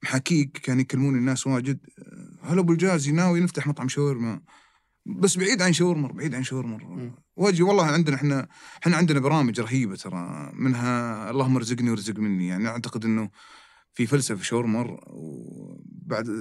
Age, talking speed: 30-49, 145 wpm